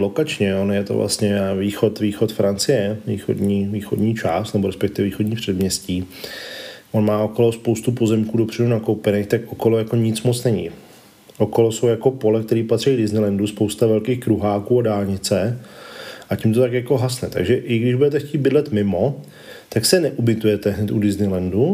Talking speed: 165 wpm